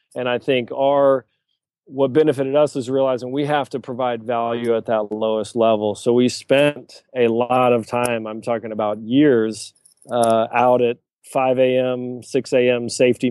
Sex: male